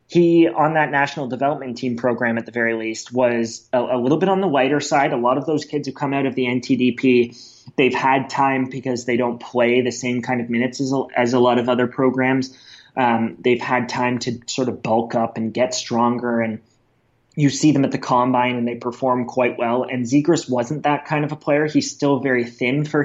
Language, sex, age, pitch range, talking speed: English, male, 30-49, 120-140 Hz, 225 wpm